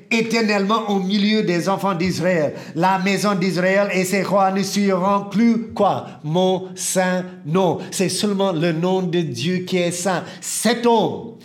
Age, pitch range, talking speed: 50-69, 150-200 Hz, 155 wpm